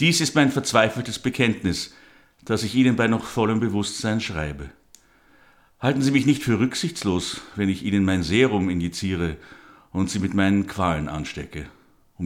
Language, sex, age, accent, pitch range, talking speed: German, male, 60-79, German, 85-115 Hz, 155 wpm